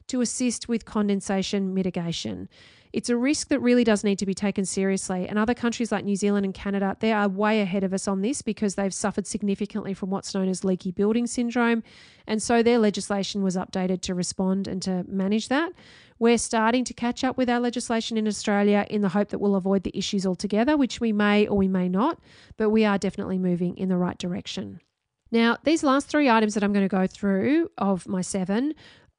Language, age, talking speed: English, 40-59, 215 wpm